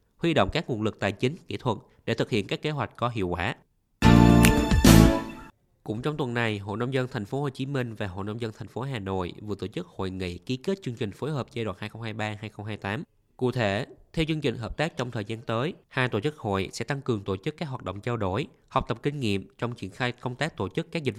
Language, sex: Vietnamese, male